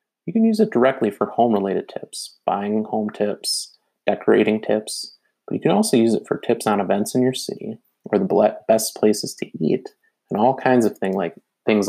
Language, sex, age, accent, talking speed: English, male, 30-49, American, 195 wpm